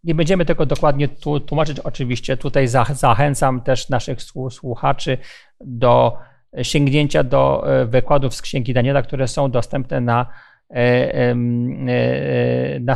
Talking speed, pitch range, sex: 105 wpm, 130-165 Hz, male